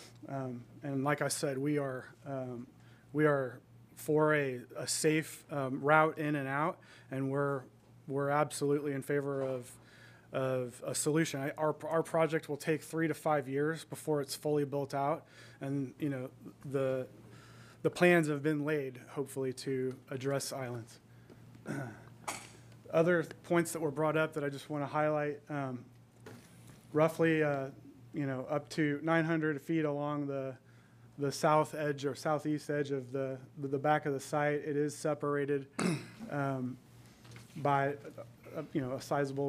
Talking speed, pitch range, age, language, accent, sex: 160 wpm, 135-150 Hz, 30-49, English, American, male